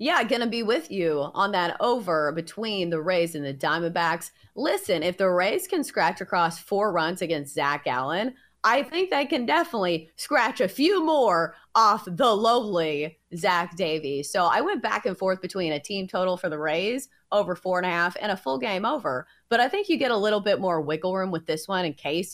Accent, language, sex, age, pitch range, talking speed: American, English, female, 30-49, 165-235 Hz, 215 wpm